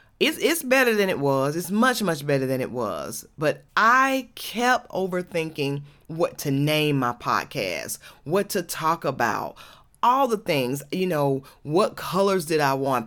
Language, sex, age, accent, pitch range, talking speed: English, female, 30-49, American, 145-185 Hz, 165 wpm